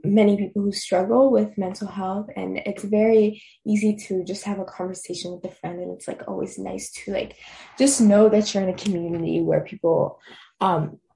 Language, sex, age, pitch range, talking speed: English, female, 10-29, 180-210 Hz, 195 wpm